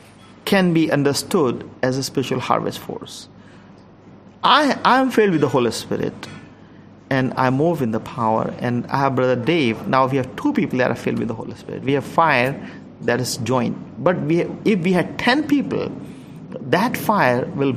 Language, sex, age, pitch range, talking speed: English, male, 50-69, 135-195 Hz, 180 wpm